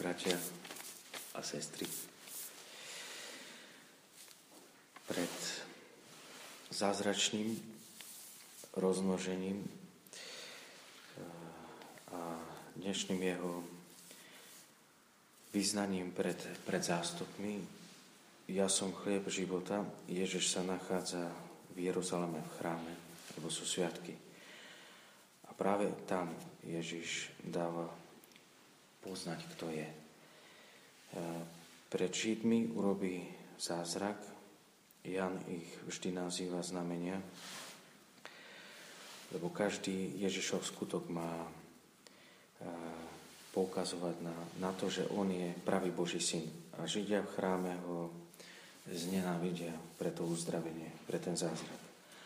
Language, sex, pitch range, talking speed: Slovak, male, 85-95 Hz, 80 wpm